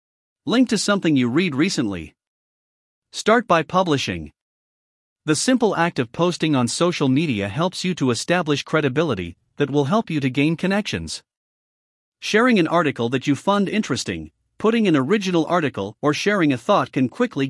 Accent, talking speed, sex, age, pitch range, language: American, 160 wpm, male, 50-69, 130-185 Hz, English